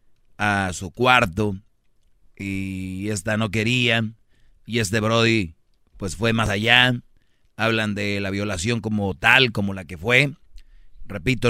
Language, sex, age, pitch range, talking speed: Spanish, male, 30-49, 105-125 Hz, 130 wpm